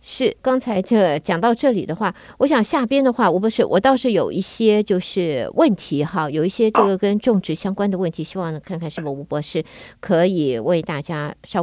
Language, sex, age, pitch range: Chinese, female, 50-69, 160-215 Hz